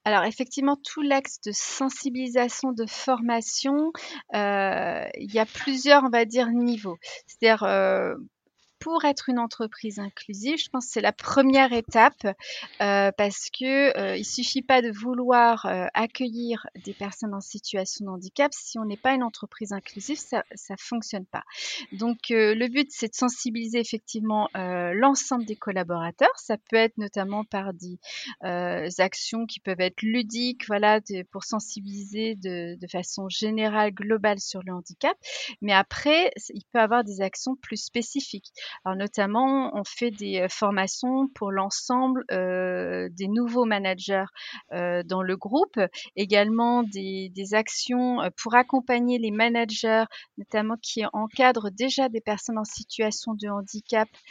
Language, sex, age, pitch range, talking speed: French, female, 30-49, 195-245 Hz, 150 wpm